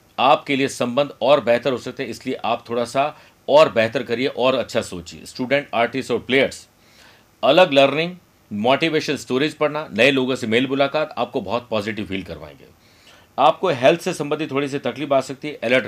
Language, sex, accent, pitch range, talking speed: Hindi, male, native, 120-155 Hz, 180 wpm